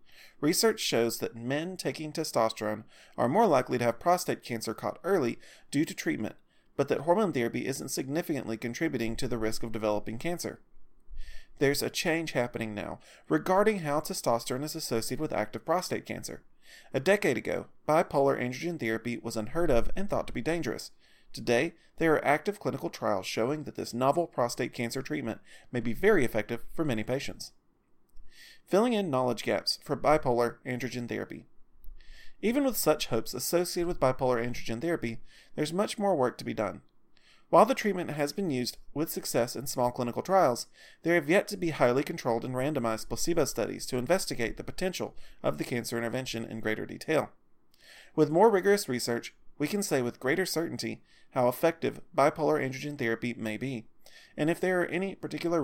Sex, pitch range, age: male, 115-165 Hz, 30-49